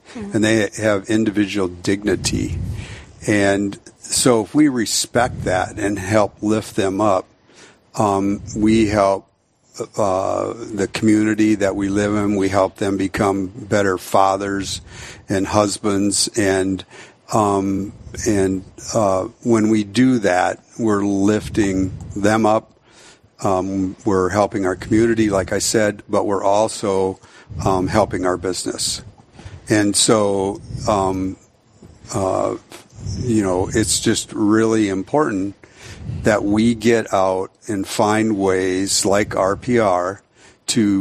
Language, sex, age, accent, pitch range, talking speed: English, male, 50-69, American, 95-110 Hz, 120 wpm